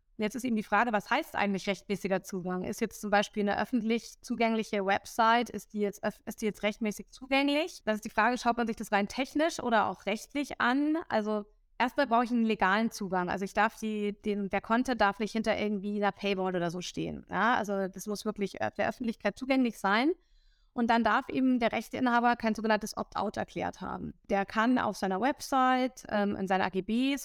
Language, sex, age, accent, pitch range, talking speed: German, female, 20-39, German, 205-235 Hz, 205 wpm